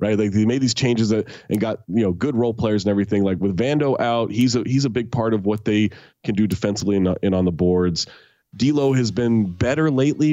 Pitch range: 100-130 Hz